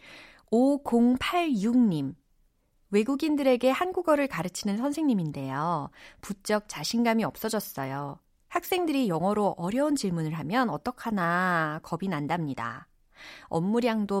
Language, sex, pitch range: Korean, female, 175-260 Hz